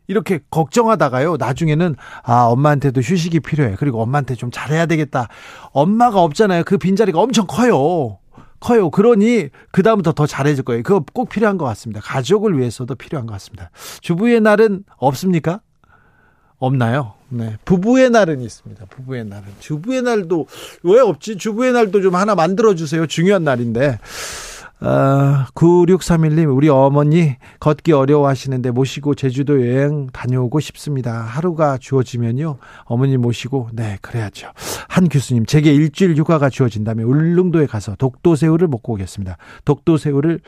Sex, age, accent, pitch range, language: male, 40-59, native, 130-180 Hz, Korean